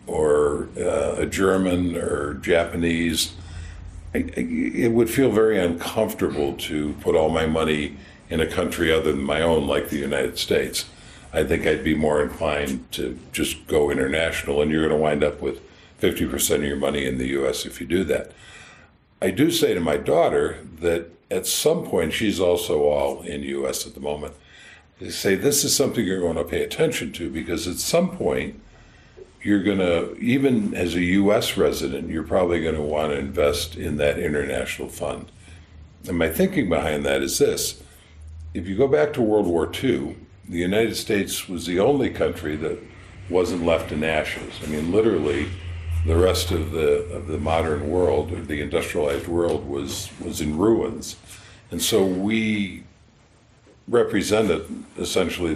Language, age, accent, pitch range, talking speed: English, 60-79, American, 75-95 Hz, 170 wpm